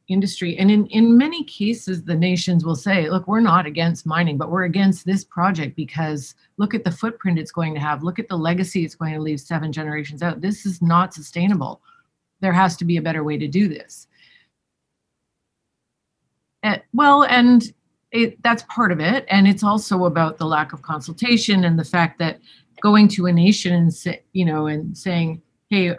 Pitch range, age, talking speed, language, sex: 160-195 Hz, 40-59, 195 wpm, English, female